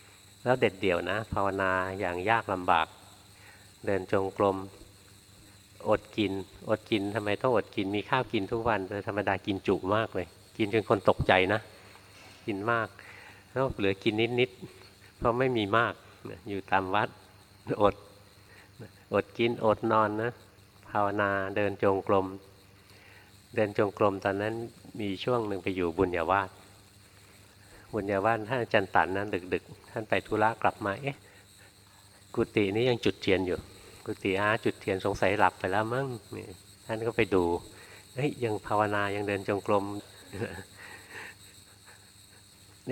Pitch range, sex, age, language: 95-105 Hz, male, 60-79, Thai